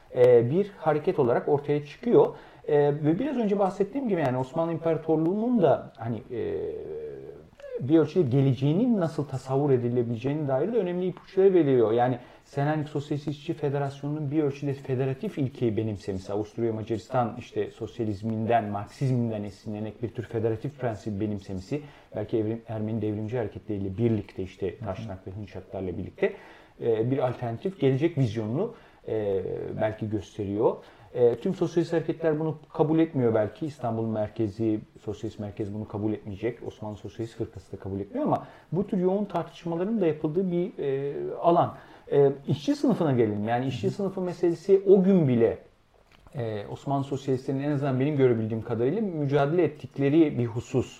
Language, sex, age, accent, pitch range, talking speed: Turkish, male, 40-59, native, 110-160 Hz, 135 wpm